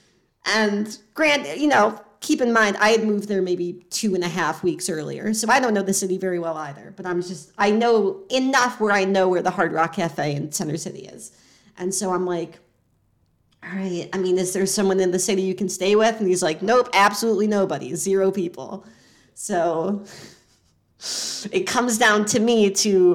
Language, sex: English, female